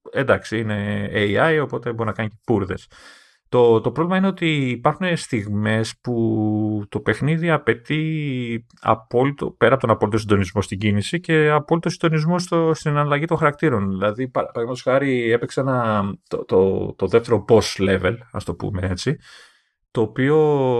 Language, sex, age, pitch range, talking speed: Greek, male, 30-49, 105-155 Hz, 160 wpm